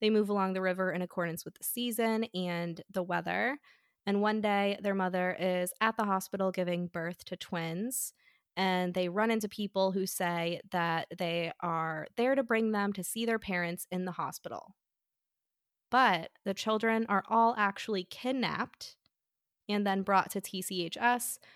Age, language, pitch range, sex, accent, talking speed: 20-39, English, 180-220 Hz, female, American, 165 wpm